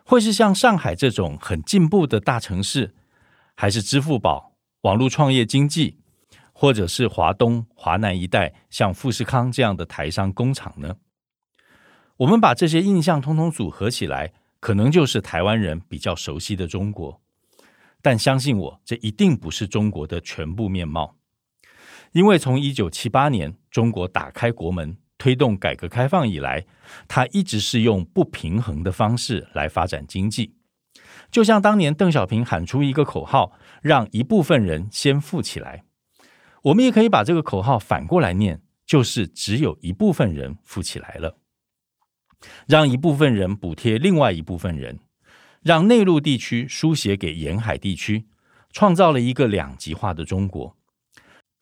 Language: Chinese